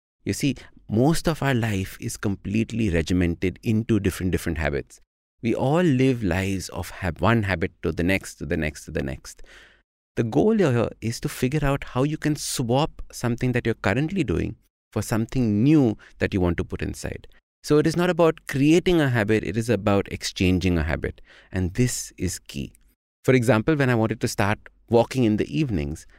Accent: Indian